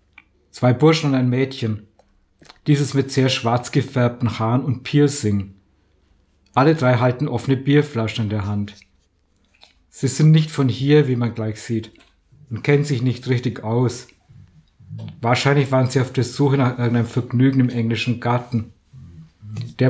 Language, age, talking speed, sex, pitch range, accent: German, 50-69, 150 wpm, male, 110-135 Hz, German